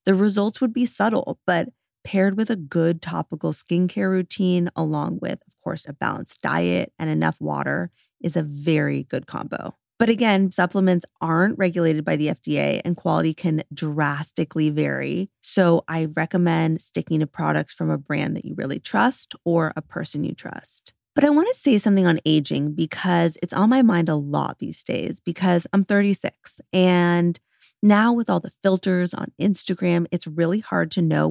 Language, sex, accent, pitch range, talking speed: English, female, American, 160-195 Hz, 175 wpm